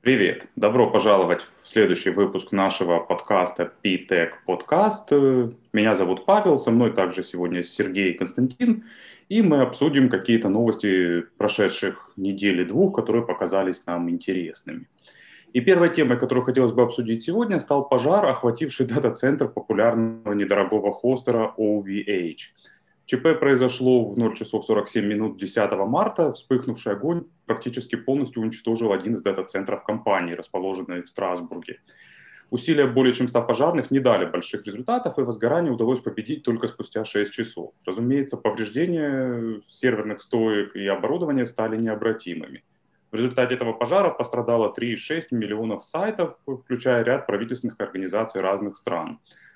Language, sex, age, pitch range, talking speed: Ukrainian, male, 30-49, 105-130 Hz, 130 wpm